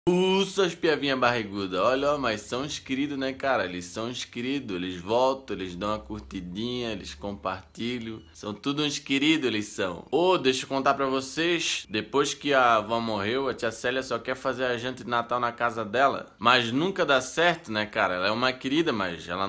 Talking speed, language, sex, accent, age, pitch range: 195 wpm, Portuguese, male, Brazilian, 20-39, 115-145 Hz